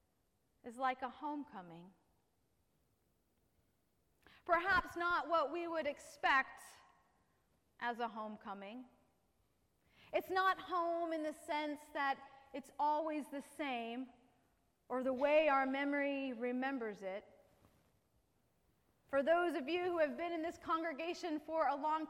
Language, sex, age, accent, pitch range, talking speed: English, female, 30-49, American, 245-315 Hz, 120 wpm